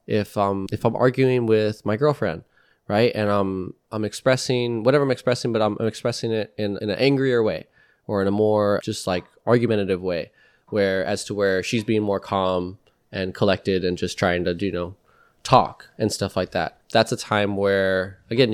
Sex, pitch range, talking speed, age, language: male, 100-125 Hz, 195 wpm, 20-39, English